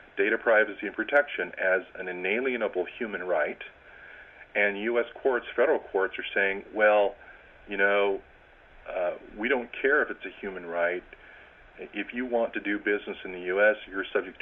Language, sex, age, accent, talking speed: English, male, 40-59, American, 160 wpm